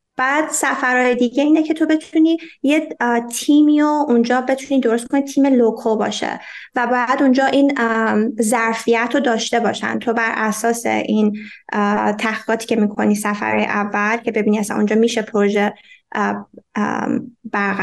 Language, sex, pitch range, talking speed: Persian, female, 215-270 Hz, 140 wpm